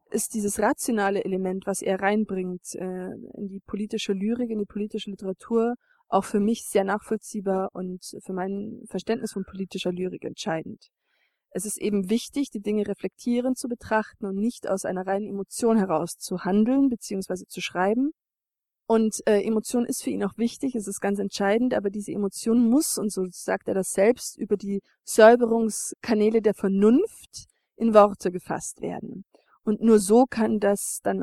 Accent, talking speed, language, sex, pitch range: German, 165 wpm, German, female, 195-240 Hz